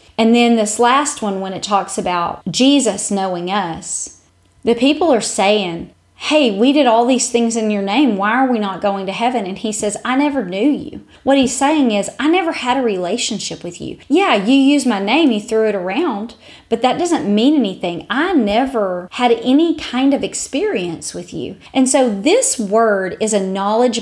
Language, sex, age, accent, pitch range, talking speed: English, female, 30-49, American, 195-250 Hz, 200 wpm